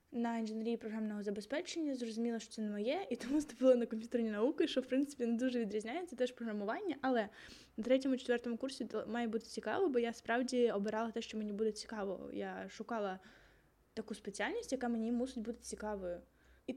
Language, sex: Ukrainian, female